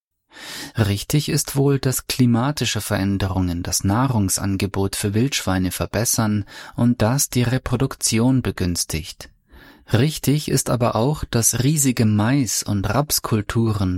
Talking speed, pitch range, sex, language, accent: 105 wpm, 100-125 Hz, male, German, German